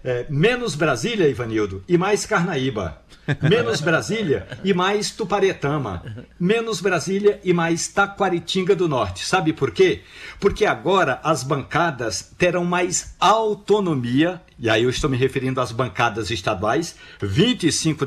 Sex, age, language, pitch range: male, 60-79, Portuguese, 145-185 Hz